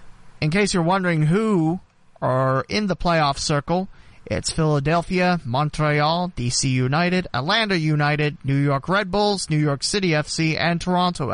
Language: English